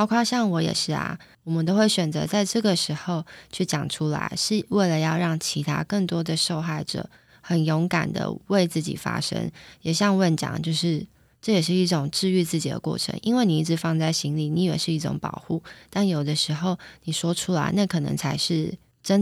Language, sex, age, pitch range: Chinese, female, 20-39, 160-190 Hz